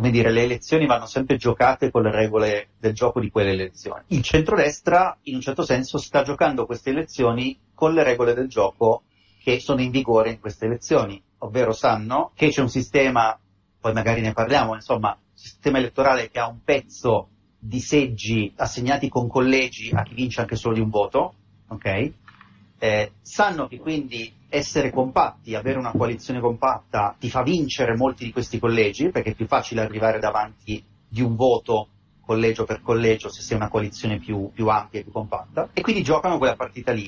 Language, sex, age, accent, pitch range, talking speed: Italian, male, 30-49, native, 110-130 Hz, 185 wpm